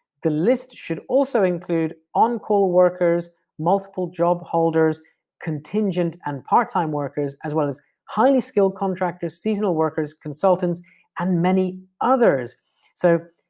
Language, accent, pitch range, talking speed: English, British, 160-200 Hz, 120 wpm